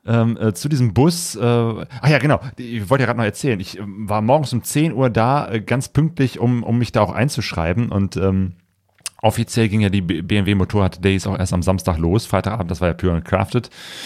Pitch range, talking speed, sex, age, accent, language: 95-115 Hz, 235 wpm, male, 30-49, German, German